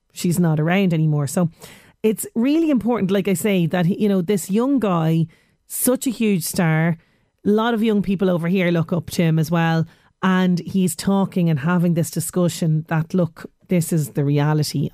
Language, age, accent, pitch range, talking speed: English, 30-49, Irish, 165-205 Hz, 190 wpm